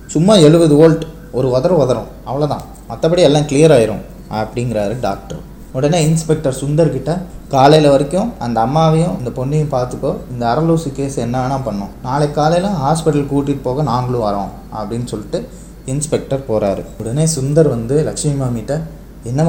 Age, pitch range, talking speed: 20-39, 110-145 Hz, 140 wpm